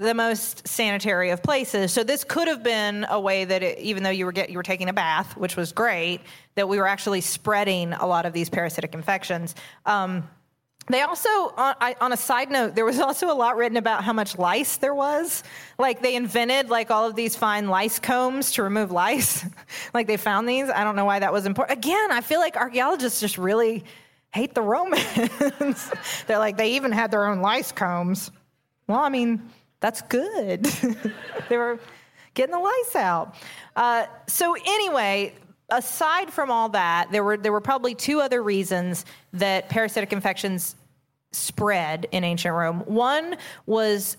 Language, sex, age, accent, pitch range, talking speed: English, female, 30-49, American, 185-240 Hz, 185 wpm